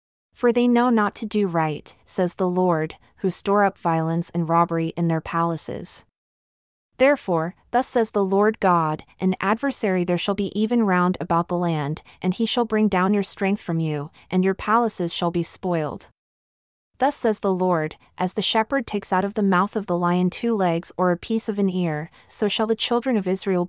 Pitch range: 170-205 Hz